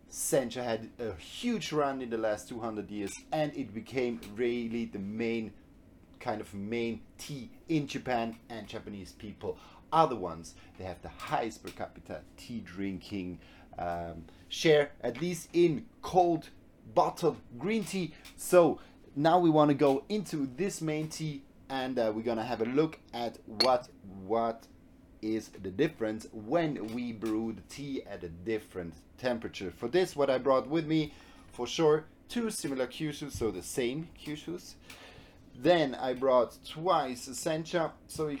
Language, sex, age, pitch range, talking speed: English, male, 30-49, 110-155 Hz, 160 wpm